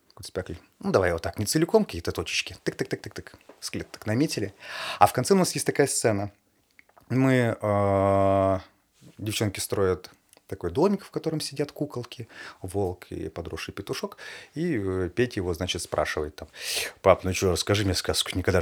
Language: Russian